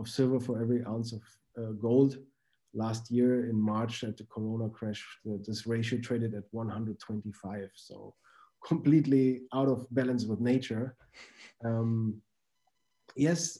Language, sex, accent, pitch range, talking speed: English, male, German, 110-130 Hz, 135 wpm